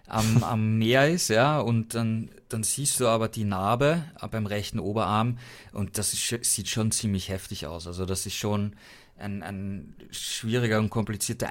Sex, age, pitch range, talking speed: male, 20-39, 100-120 Hz, 170 wpm